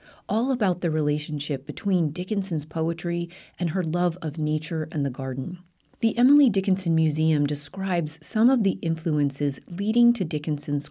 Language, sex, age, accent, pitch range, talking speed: English, female, 30-49, American, 145-190 Hz, 150 wpm